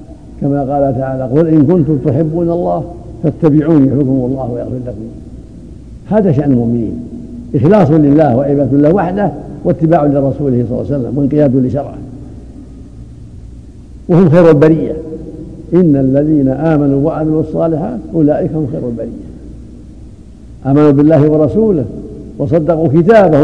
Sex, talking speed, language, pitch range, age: male, 120 wpm, Arabic, 125-155 Hz, 70-89